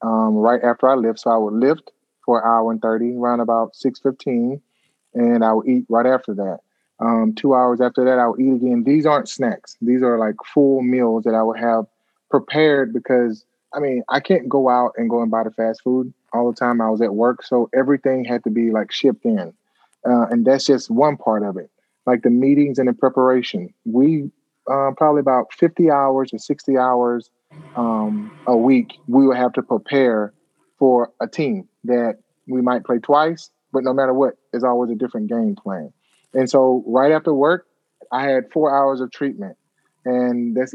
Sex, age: male, 20-39